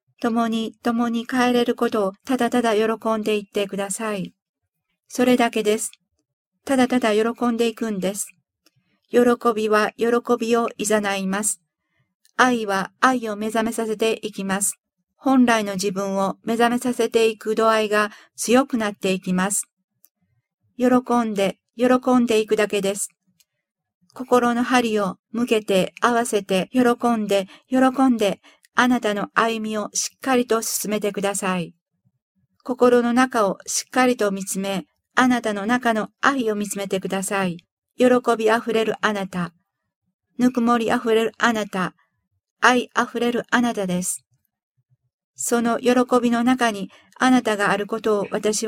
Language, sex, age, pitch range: Japanese, female, 50-69, 195-240 Hz